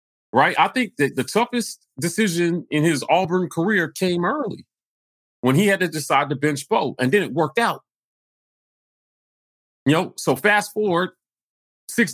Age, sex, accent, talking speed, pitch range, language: 40-59, male, American, 160 wpm, 140-215 Hz, English